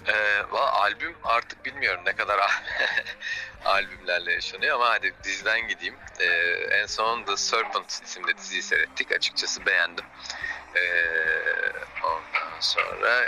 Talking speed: 115 wpm